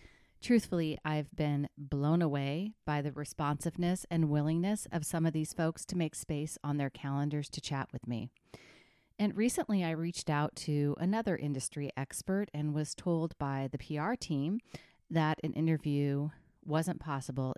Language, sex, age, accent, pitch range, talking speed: English, female, 30-49, American, 140-170 Hz, 155 wpm